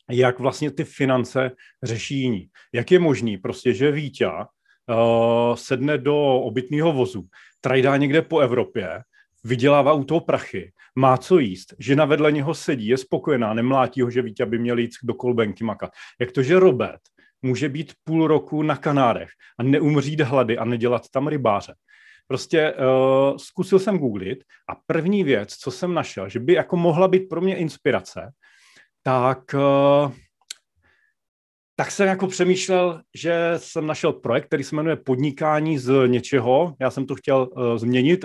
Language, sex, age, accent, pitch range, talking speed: Czech, male, 40-59, native, 120-155 Hz, 155 wpm